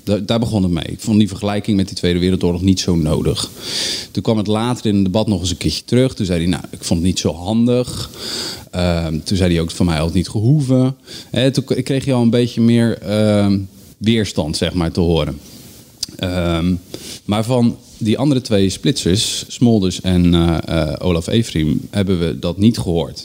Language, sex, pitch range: Dutch, male, 90-115 Hz